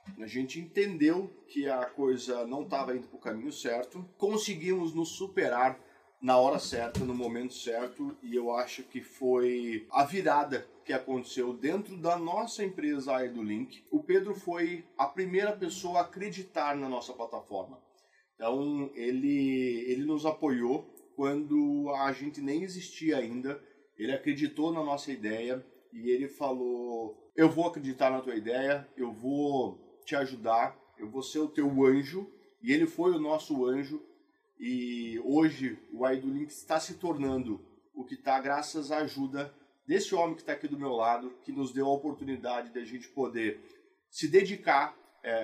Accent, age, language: Brazilian, 40-59, Portuguese